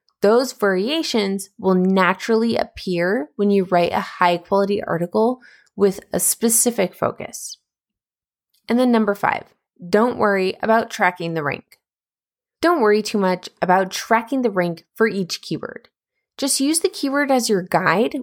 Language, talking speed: English, 140 wpm